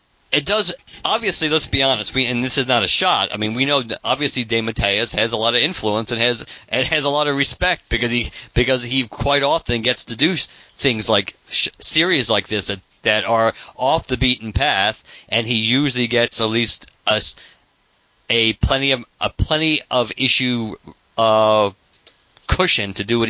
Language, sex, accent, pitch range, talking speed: English, male, American, 110-130 Hz, 195 wpm